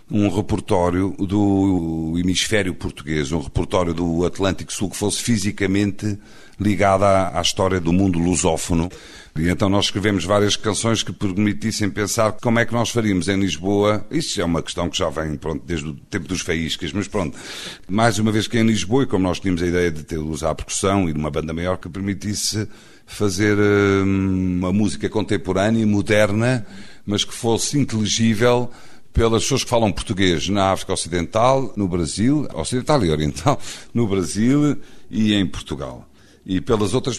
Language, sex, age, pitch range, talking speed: Portuguese, male, 50-69, 85-110 Hz, 170 wpm